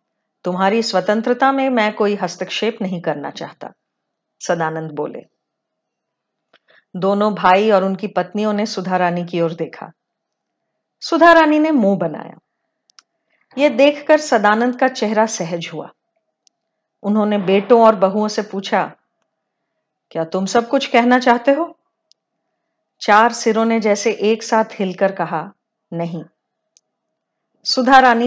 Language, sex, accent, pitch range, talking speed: Hindi, female, native, 190-245 Hz, 115 wpm